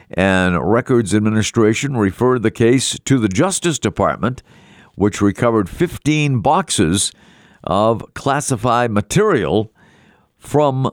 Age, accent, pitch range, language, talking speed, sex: 50-69, American, 100-130 Hz, English, 100 wpm, male